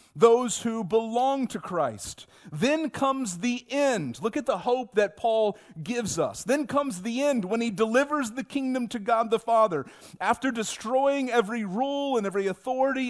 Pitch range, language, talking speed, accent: 215-260 Hz, English, 170 wpm, American